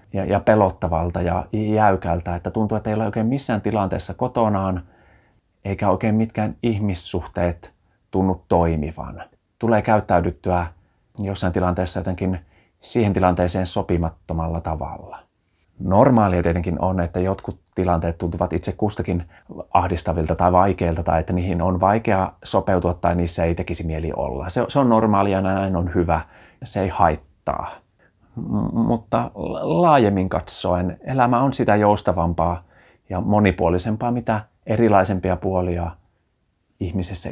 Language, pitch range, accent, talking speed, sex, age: Finnish, 85-105 Hz, native, 125 wpm, male, 30-49